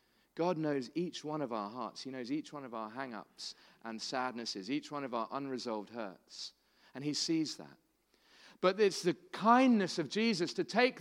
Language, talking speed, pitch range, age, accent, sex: English, 185 wpm, 180-235 Hz, 40-59, British, male